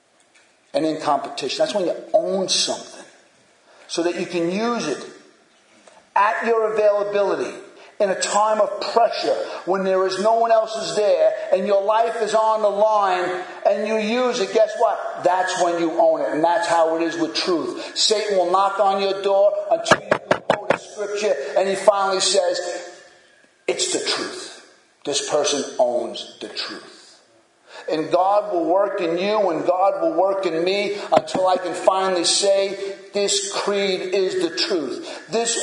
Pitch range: 185-300 Hz